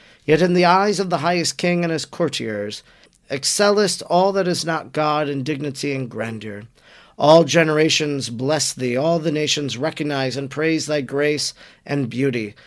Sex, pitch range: male, 135-165 Hz